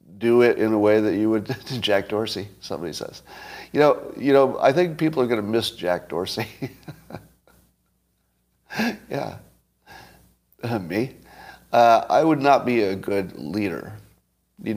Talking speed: 145 wpm